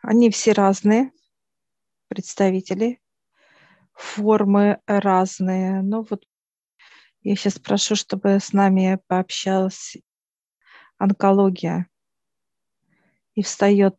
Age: 40-59